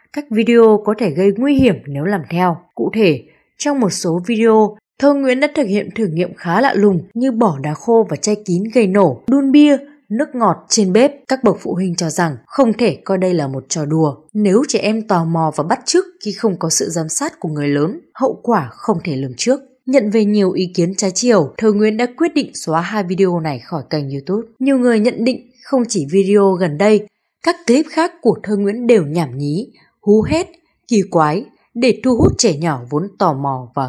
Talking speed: 225 wpm